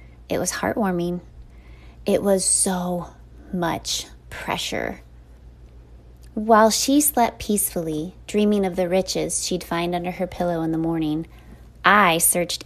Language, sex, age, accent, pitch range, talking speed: English, female, 20-39, American, 170-205 Hz, 125 wpm